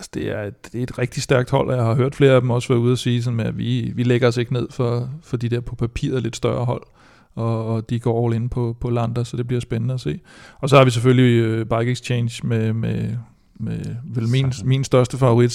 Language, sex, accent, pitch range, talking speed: Danish, male, native, 115-130 Hz, 260 wpm